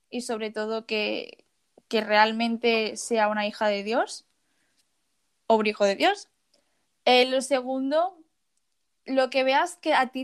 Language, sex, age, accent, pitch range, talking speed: Spanish, female, 20-39, Spanish, 230-285 Hz, 145 wpm